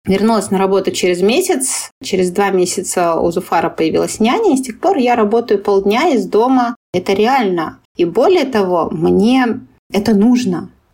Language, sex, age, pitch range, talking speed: Russian, female, 20-39, 190-240 Hz, 160 wpm